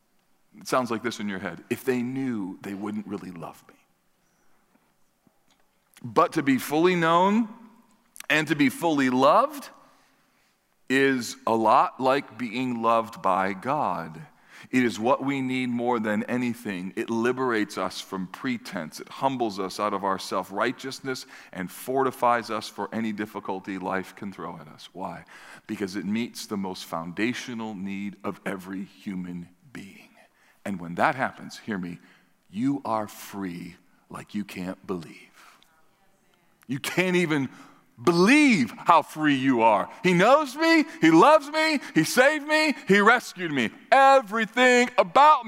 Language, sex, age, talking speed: English, male, 40-59, 145 wpm